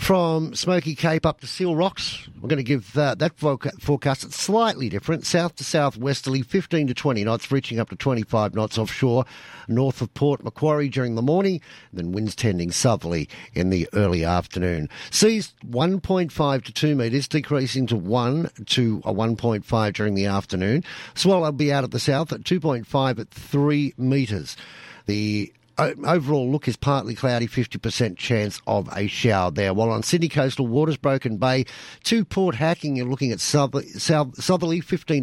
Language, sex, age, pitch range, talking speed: English, male, 50-69, 110-150 Hz, 165 wpm